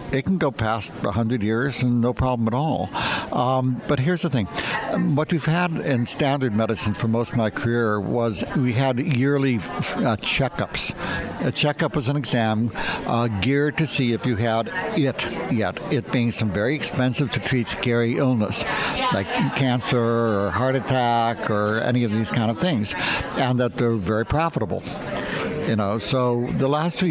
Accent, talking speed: American, 175 wpm